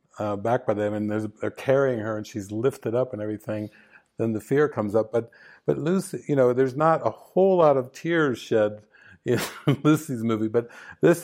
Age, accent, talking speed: 50-69, American, 205 wpm